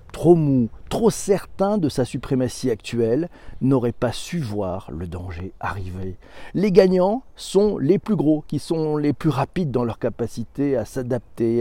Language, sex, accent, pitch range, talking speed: French, male, French, 120-160 Hz, 160 wpm